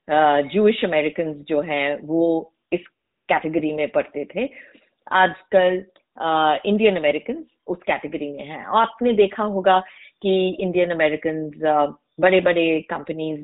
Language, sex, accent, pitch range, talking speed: Hindi, female, native, 155-245 Hz, 115 wpm